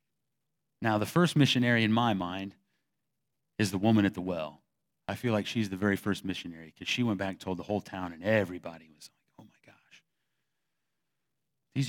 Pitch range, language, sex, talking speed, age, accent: 100-130 Hz, English, male, 190 wpm, 30-49, American